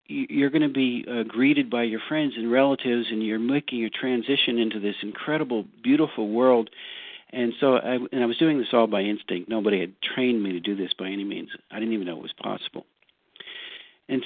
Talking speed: 210 wpm